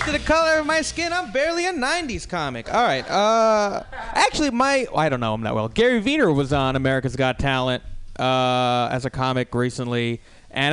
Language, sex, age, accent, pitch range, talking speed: English, male, 20-39, American, 130-200 Hz, 195 wpm